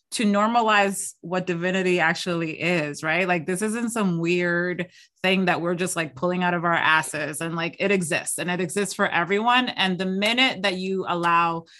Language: English